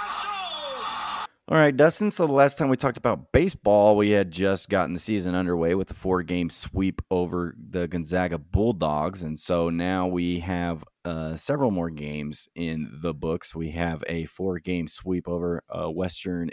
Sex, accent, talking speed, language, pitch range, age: male, American, 165 wpm, English, 85-100 Hz, 30-49